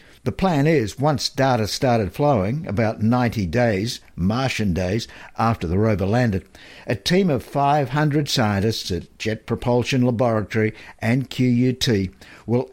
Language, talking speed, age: English, 130 wpm, 60-79